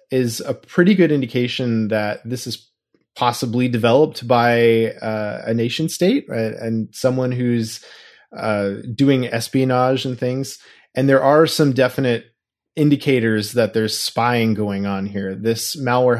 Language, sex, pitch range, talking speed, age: English, male, 115-140 Hz, 140 wpm, 20-39